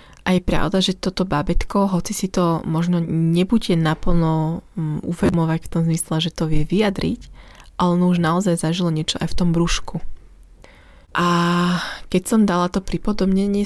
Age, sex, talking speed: 20-39, female, 160 wpm